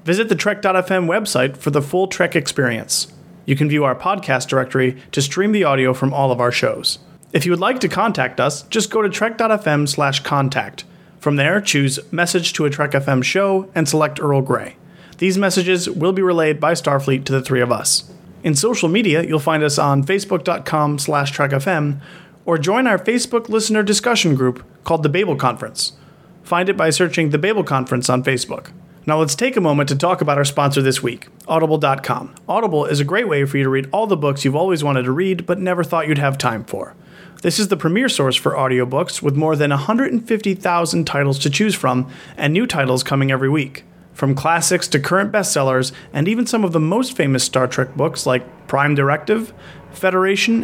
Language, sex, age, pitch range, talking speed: English, male, 30-49, 140-185 Hz, 200 wpm